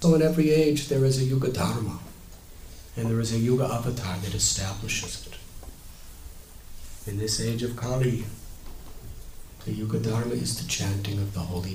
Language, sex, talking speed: English, male, 165 wpm